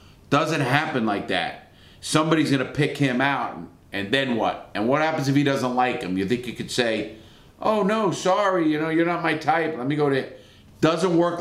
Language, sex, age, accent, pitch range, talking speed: English, male, 40-59, American, 115-155 Hz, 210 wpm